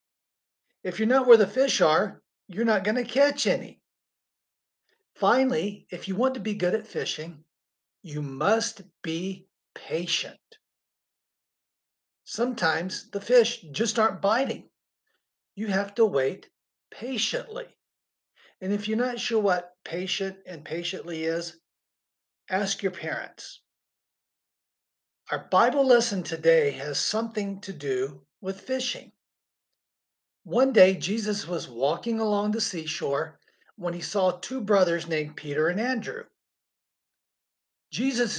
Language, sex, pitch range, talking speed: English, male, 175-235 Hz, 120 wpm